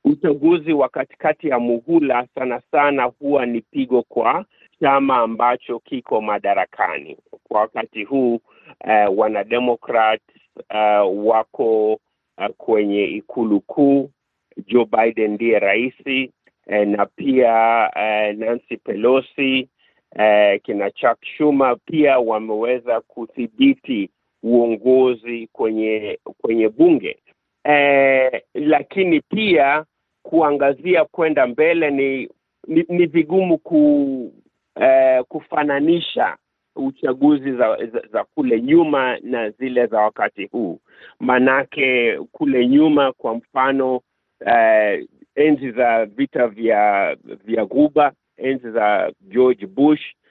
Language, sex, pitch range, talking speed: Swahili, male, 115-150 Hz, 105 wpm